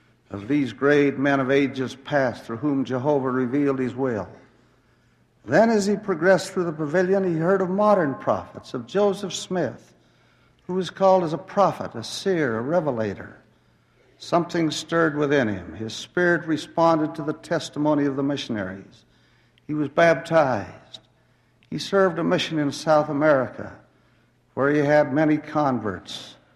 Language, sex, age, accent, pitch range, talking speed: English, male, 60-79, American, 125-155 Hz, 150 wpm